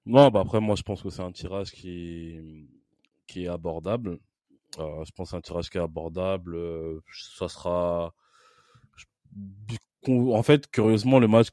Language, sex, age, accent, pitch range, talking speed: French, male, 20-39, French, 90-105 Hz, 170 wpm